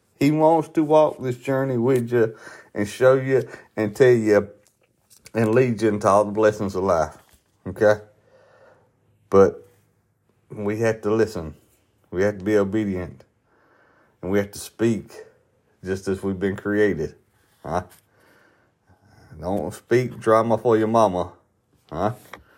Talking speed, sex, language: 140 wpm, male, English